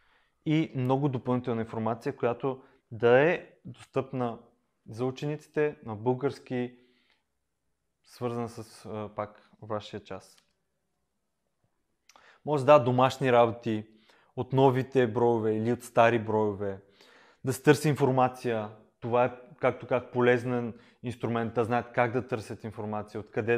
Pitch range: 110-130 Hz